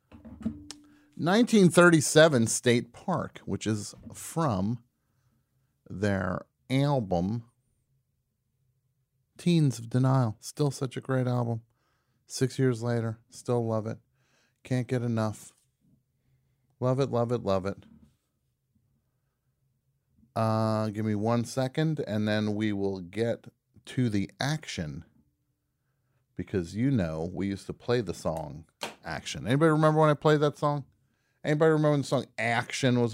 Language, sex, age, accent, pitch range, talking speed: English, male, 40-59, American, 110-135 Hz, 125 wpm